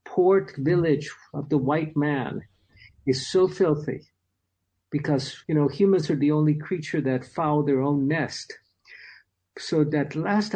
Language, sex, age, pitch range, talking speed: English, male, 50-69, 135-175 Hz, 140 wpm